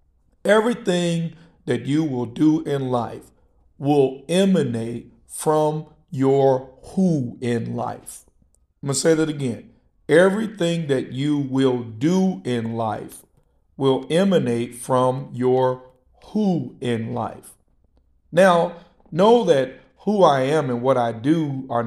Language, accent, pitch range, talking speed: English, American, 120-160 Hz, 125 wpm